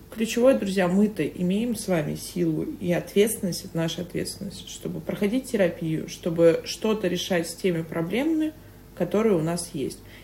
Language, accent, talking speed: Russian, native, 145 wpm